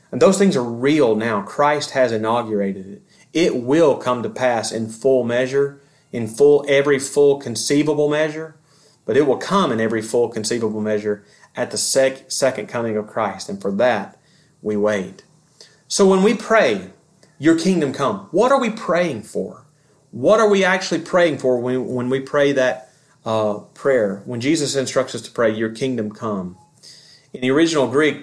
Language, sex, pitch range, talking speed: English, male, 125-155 Hz, 175 wpm